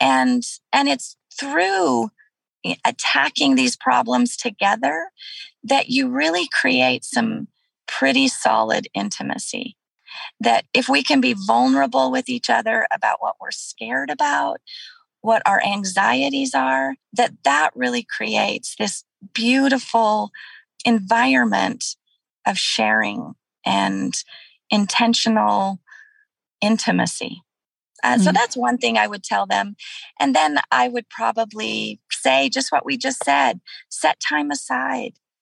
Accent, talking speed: American, 115 wpm